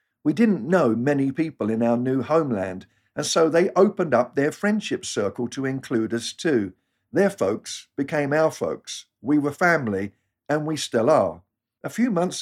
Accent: British